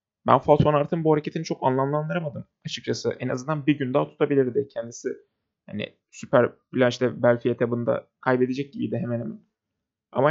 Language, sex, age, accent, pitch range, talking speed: Turkish, male, 30-49, native, 125-150 Hz, 145 wpm